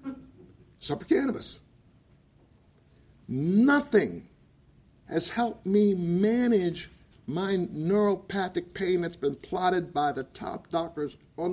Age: 50-69